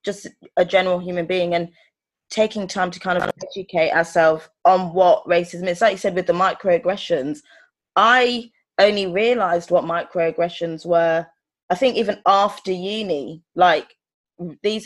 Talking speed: 145 wpm